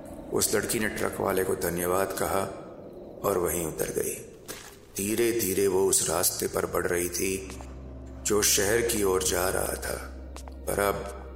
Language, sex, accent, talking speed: Hindi, male, native, 160 wpm